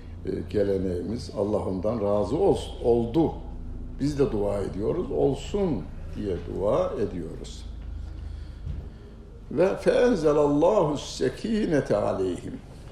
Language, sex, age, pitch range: Turkish, male, 60-79, 90-120 Hz